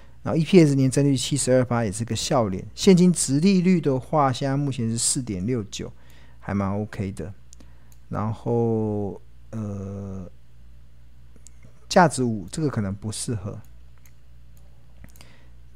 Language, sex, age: Chinese, male, 50-69